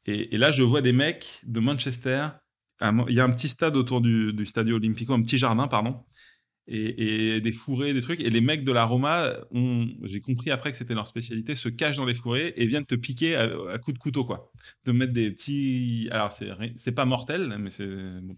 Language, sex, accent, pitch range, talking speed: French, male, French, 110-130 Hz, 230 wpm